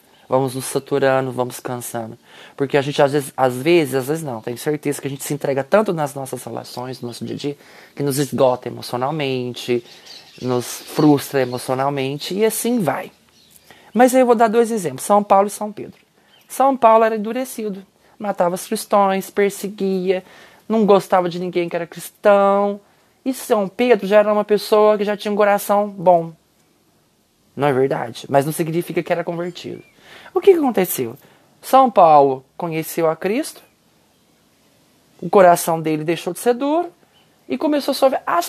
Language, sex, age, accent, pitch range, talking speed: Portuguese, male, 20-39, Brazilian, 150-225 Hz, 170 wpm